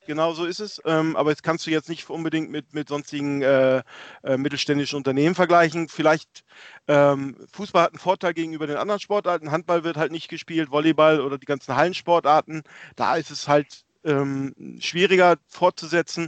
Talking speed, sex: 160 wpm, male